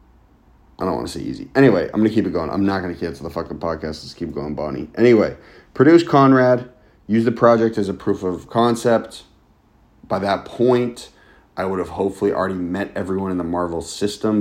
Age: 30-49